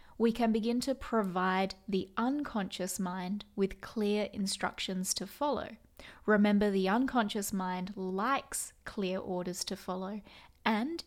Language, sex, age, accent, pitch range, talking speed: English, female, 20-39, Australian, 190-230 Hz, 125 wpm